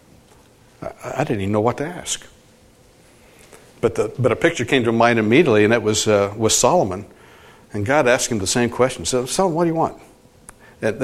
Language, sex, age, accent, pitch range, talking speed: English, male, 60-79, American, 110-145 Hz, 200 wpm